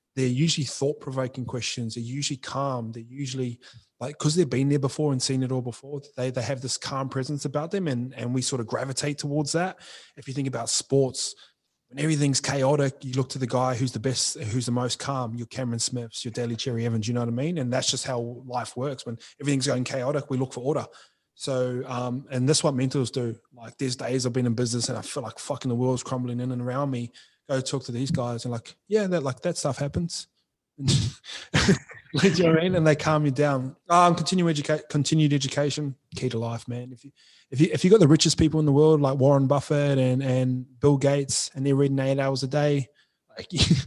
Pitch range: 125-145 Hz